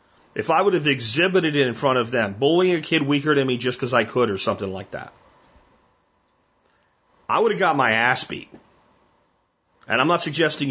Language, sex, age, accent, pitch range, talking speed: German, male, 40-59, American, 115-150 Hz, 195 wpm